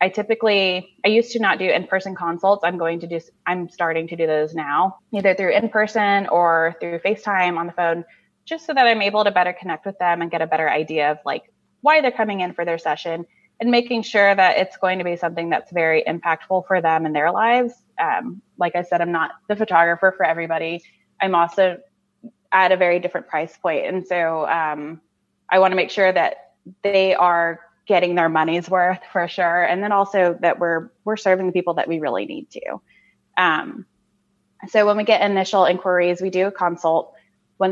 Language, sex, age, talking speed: English, female, 20-39, 205 wpm